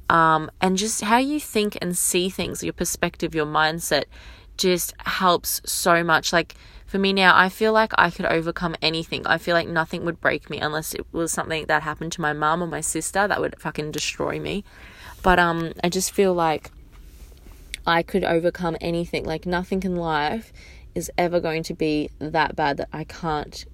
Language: English